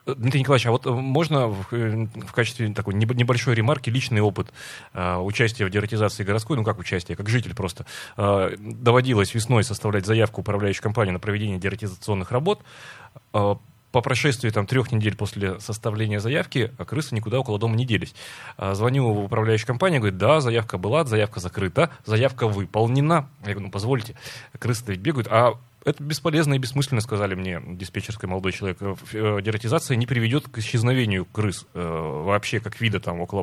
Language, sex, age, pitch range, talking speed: Russian, male, 30-49, 105-130 Hz, 165 wpm